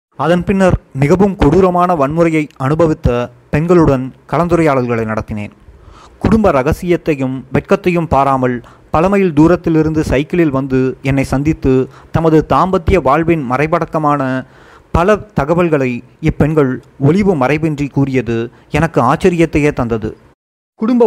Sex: male